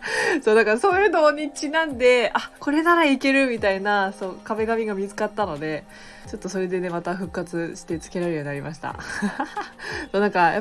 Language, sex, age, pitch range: Japanese, female, 20-39, 165-245 Hz